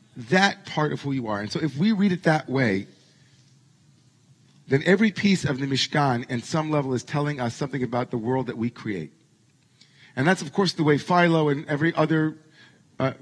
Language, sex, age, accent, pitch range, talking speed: English, male, 40-59, American, 135-170 Hz, 200 wpm